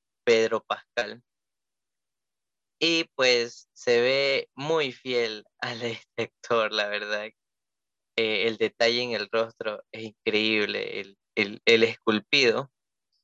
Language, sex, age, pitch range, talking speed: Spanish, male, 20-39, 115-140 Hz, 110 wpm